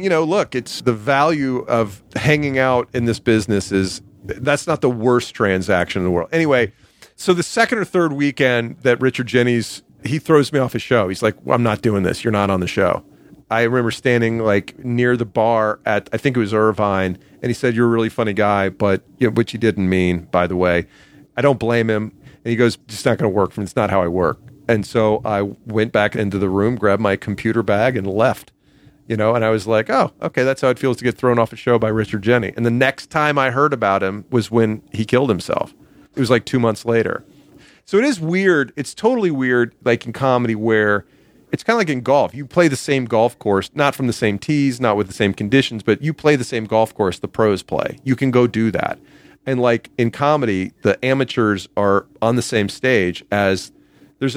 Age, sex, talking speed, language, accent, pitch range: 40-59, male, 235 wpm, English, American, 105-130 Hz